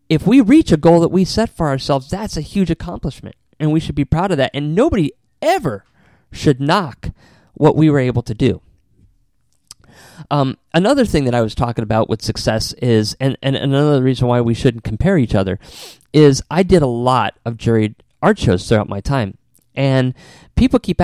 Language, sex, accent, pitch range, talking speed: English, male, American, 115-160 Hz, 195 wpm